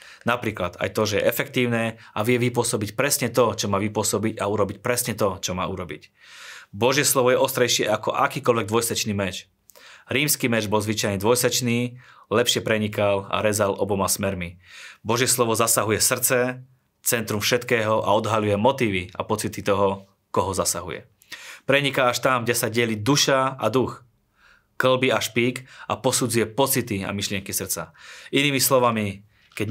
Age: 30-49